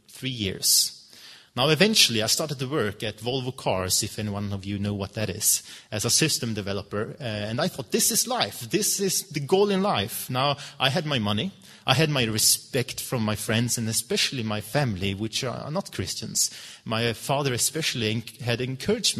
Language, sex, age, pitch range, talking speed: Danish, male, 30-49, 110-155 Hz, 190 wpm